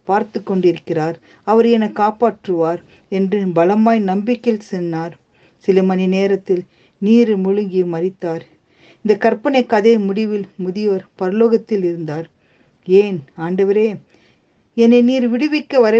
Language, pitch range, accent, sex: Tamil, 180-230 Hz, native, female